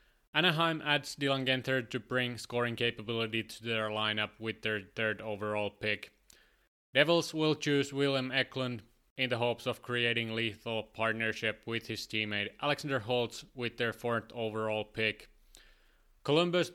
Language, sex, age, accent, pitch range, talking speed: English, male, 20-39, Finnish, 110-130 Hz, 140 wpm